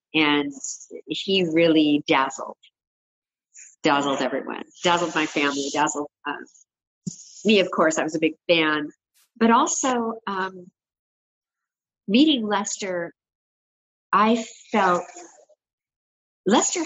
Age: 50-69